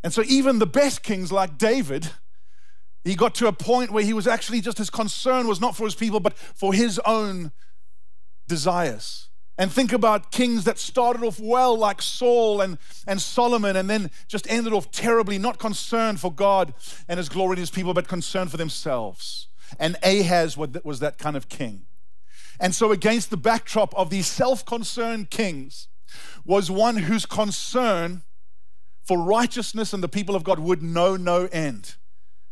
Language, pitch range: English, 155-225 Hz